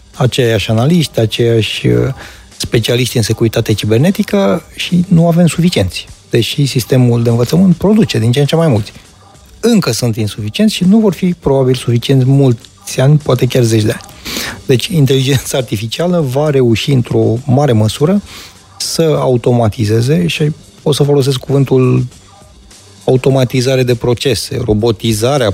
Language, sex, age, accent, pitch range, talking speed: Romanian, male, 30-49, native, 115-140 Hz, 135 wpm